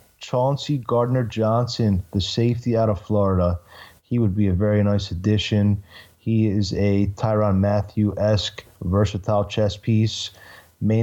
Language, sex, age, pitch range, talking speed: English, male, 20-39, 100-115 Hz, 125 wpm